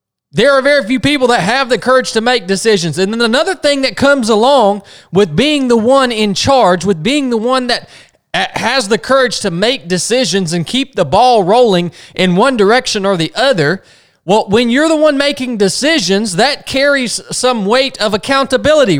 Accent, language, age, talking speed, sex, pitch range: American, English, 20-39, 190 wpm, male, 200-275 Hz